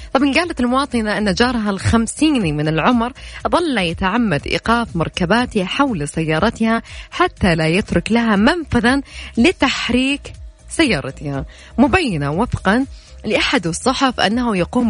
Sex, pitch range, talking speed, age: female, 175-260 Hz, 110 wpm, 20-39